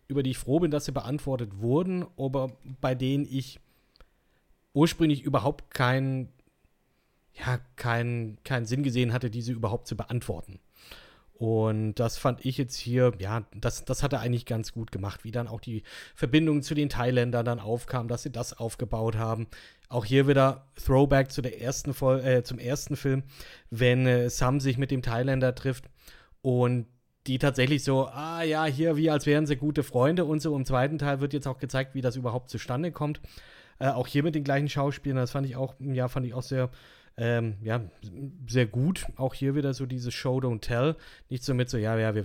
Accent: German